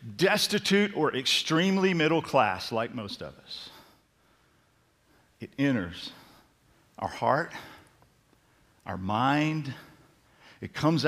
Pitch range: 120-160 Hz